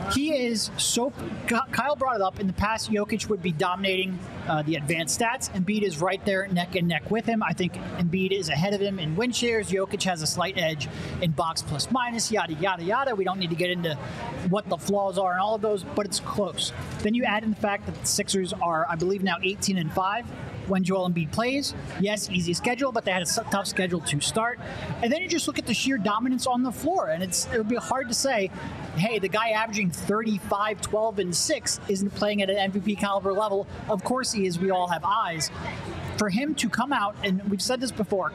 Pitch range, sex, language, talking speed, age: 180-225 Hz, male, English, 235 wpm, 30-49